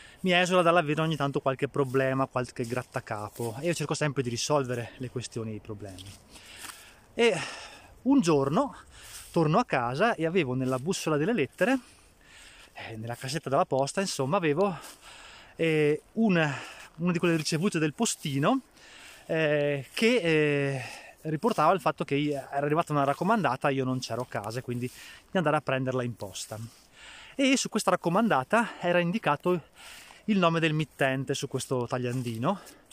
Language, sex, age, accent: Italian, male, 20-39, native